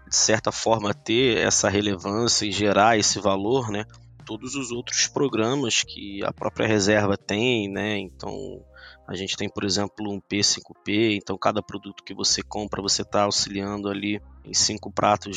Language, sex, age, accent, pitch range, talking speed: Portuguese, male, 20-39, Brazilian, 100-115 Hz, 165 wpm